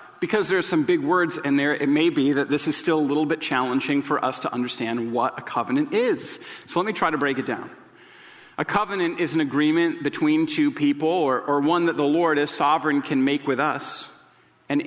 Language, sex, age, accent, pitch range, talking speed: English, male, 40-59, American, 135-170 Hz, 225 wpm